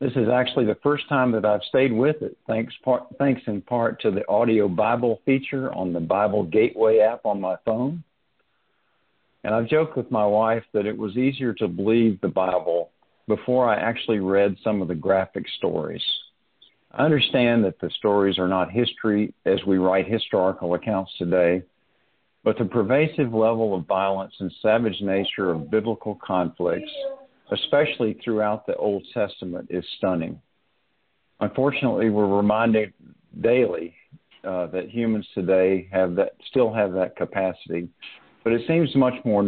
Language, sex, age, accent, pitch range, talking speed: English, male, 50-69, American, 95-120 Hz, 160 wpm